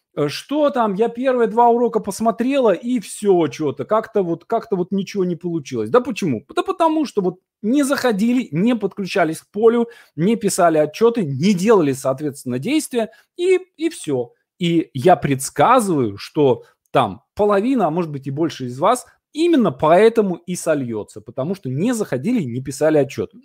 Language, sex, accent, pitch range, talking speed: Russian, male, native, 150-230 Hz, 160 wpm